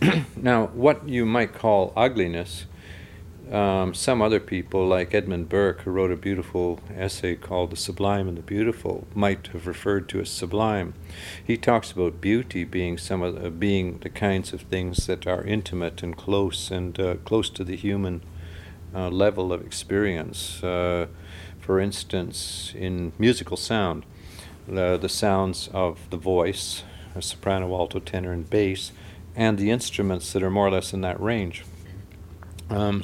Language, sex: English, male